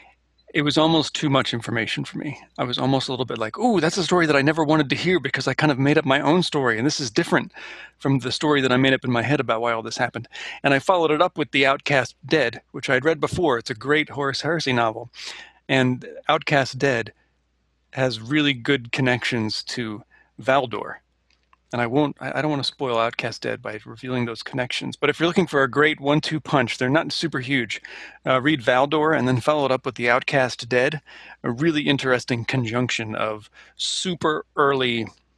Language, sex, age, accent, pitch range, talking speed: English, male, 40-59, American, 120-150 Hz, 215 wpm